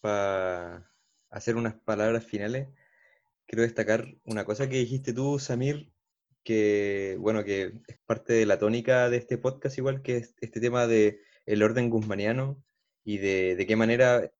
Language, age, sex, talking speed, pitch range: Spanish, 20-39, male, 145 wpm, 105-125 Hz